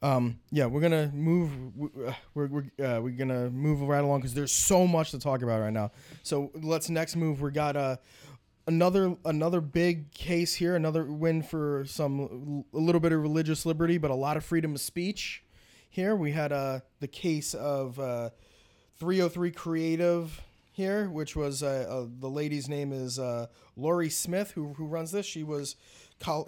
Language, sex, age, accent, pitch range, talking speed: English, male, 20-39, American, 135-160 Hz, 185 wpm